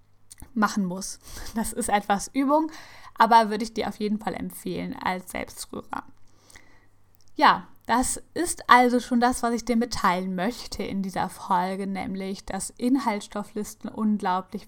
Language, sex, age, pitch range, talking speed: German, female, 10-29, 195-240 Hz, 140 wpm